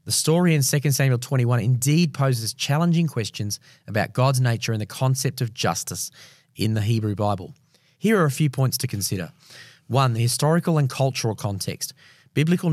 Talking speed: 170 wpm